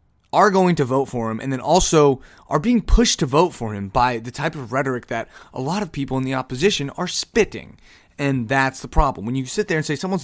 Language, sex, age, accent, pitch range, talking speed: English, male, 20-39, American, 110-155 Hz, 245 wpm